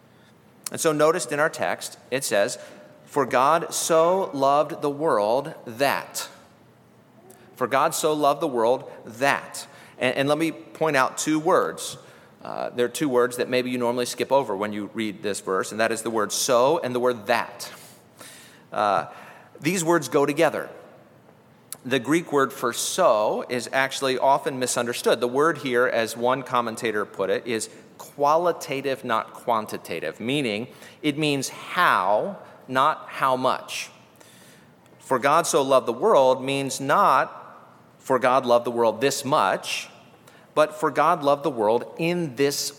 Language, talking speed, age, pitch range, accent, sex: English, 160 wpm, 40-59, 120-155 Hz, American, male